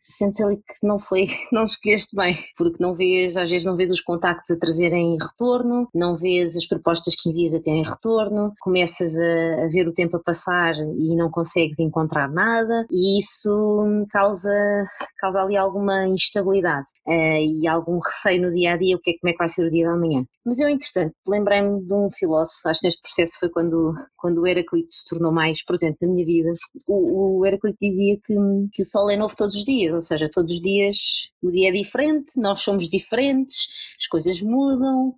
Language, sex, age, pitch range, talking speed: Portuguese, female, 20-39, 175-225 Hz, 195 wpm